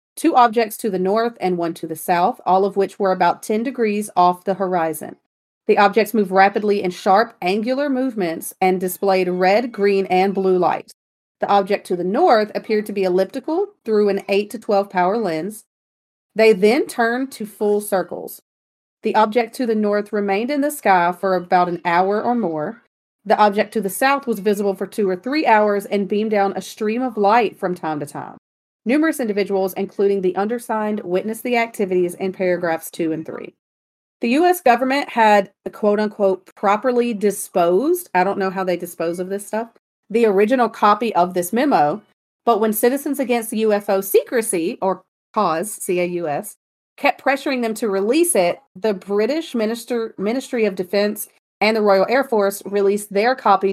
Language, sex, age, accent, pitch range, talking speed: English, female, 40-59, American, 190-230 Hz, 180 wpm